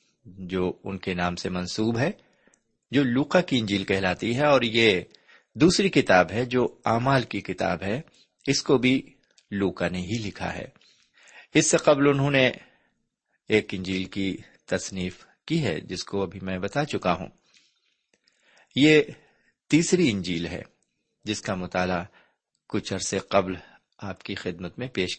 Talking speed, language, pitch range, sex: 150 wpm, Urdu, 95-135 Hz, male